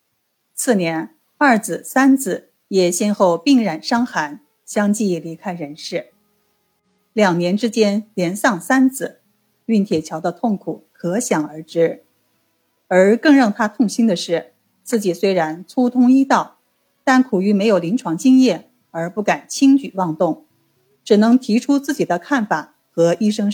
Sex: female